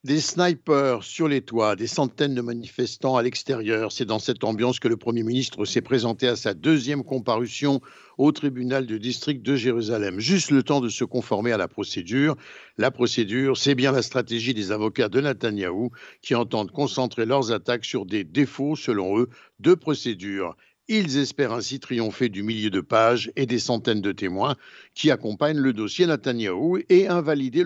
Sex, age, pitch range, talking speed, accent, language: male, 60-79, 115-145 Hz, 180 wpm, French, Italian